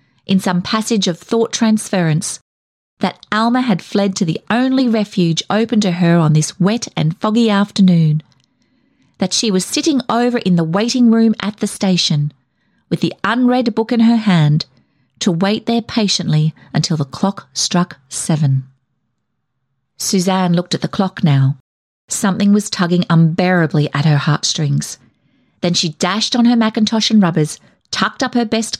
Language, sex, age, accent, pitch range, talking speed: English, female, 40-59, Australian, 155-215 Hz, 160 wpm